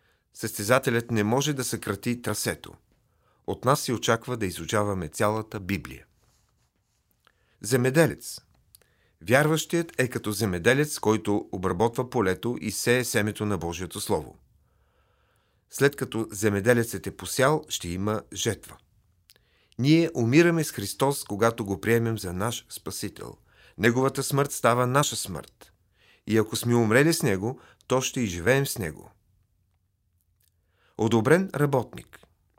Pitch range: 100-130 Hz